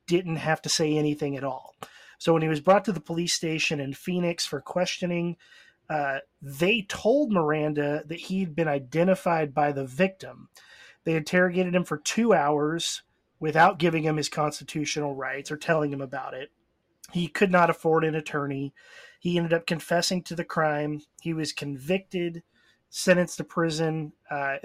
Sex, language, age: male, English, 30-49